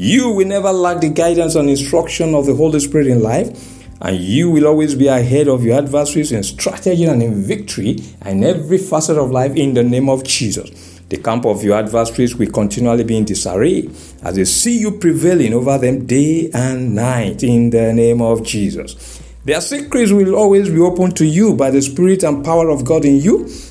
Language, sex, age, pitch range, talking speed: English, male, 50-69, 115-160 Hz, 200 wpm